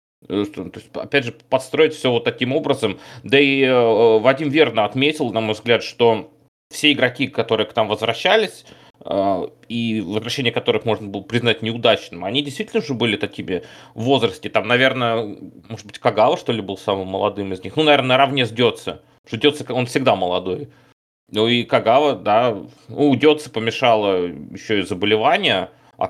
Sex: male